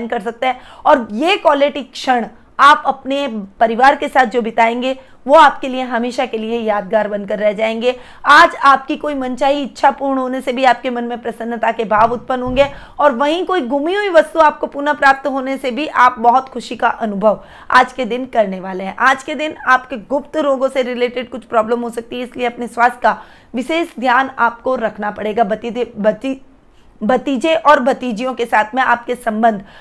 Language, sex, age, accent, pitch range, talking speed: Hindi, female, 20-39, native, 220-270 Hz, 115 wpm